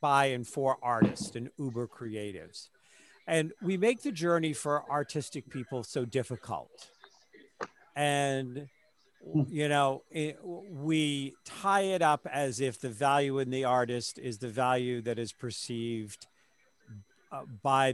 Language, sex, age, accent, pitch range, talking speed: English, male, 50-69, American, 125-170 Hz, 130 wpm